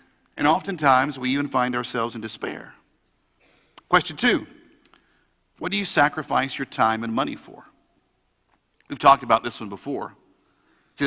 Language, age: English, 50-69